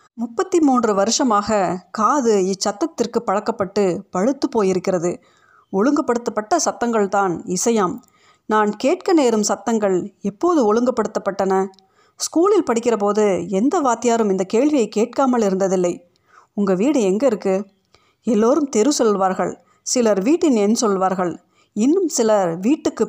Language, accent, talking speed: Tamil, native, 105 wpm